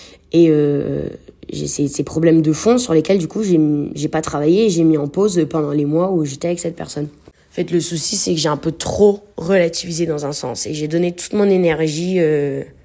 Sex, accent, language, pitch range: female, French, French, 155-195 Hz